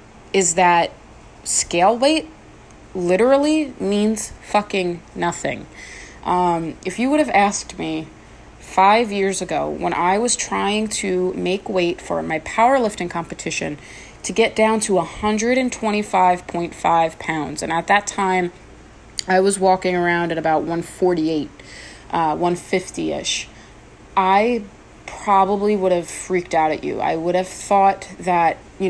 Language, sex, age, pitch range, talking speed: English, female, 30-49, 170-210 Hz, 130 wpm